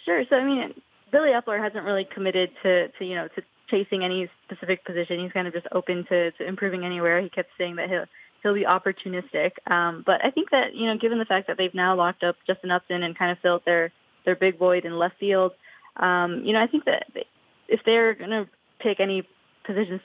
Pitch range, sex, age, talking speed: 175-195 Hz, female, 20-39, 230 wpm